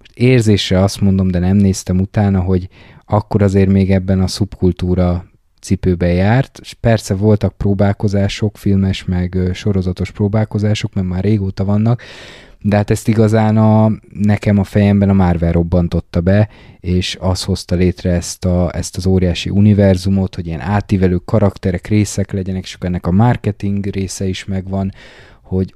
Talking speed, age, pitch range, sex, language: 150 wpm, 20-39, 95-110 Hz, male, Hungarian